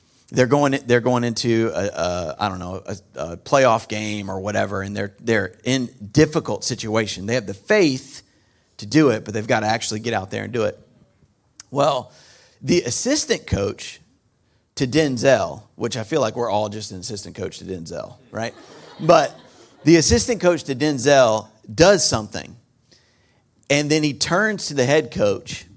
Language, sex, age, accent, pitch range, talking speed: English, male, 40-59, American, 105-145 Hz, 175 wpm